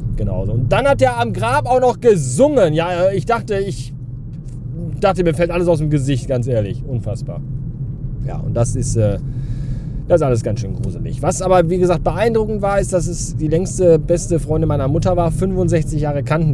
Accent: German